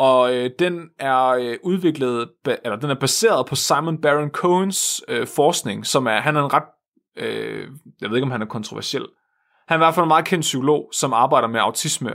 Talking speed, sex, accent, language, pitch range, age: 195 wpm, male, native, Danish, 130-170 Hz, 30-49